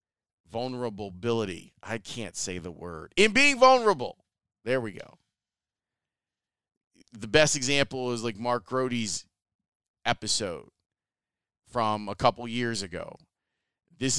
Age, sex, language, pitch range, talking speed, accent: 30-49, male, English, 105-140 Hz, 110 wpm, American